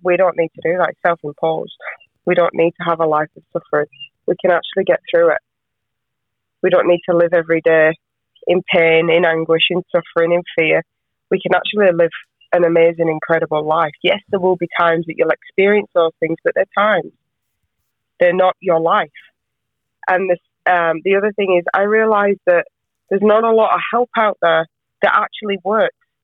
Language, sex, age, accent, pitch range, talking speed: English, female, 20-39, British, 165-210 Hz, 190 wpm